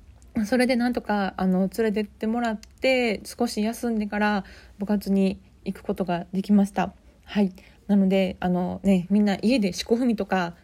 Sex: female